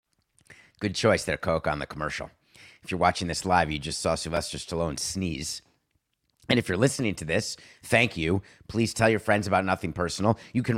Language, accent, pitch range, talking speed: English, American, 95-130 Hz, 195 wpm